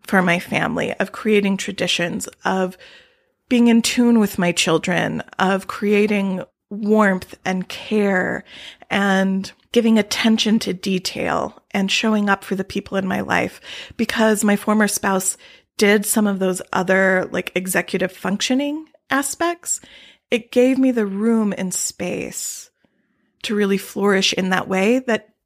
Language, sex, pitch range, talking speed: English, female, 190-225 Hz, 140 wpm